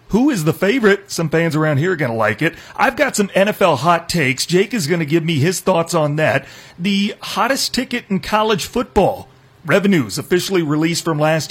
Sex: male